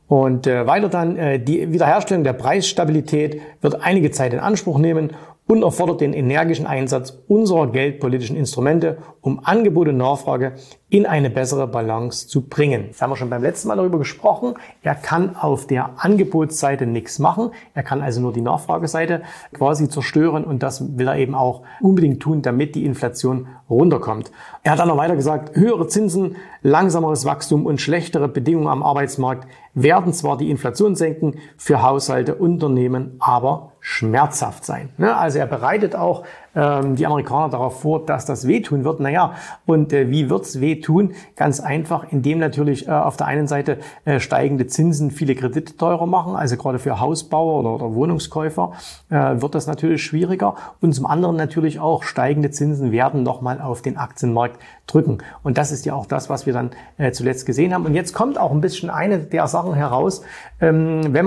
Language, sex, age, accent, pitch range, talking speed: German, male, 40-59, German, 135-165 Hz, 165 wpm